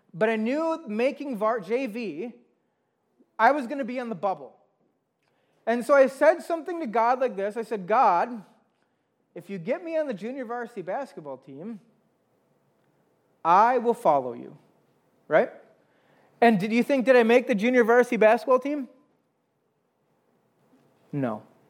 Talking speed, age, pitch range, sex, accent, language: 145 wpm, 30-49, 200-265 Hz, male, American, English